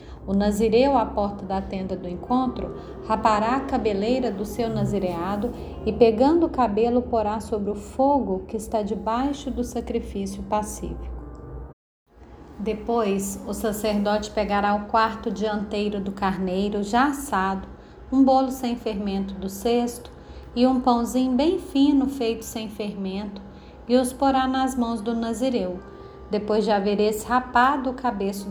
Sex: female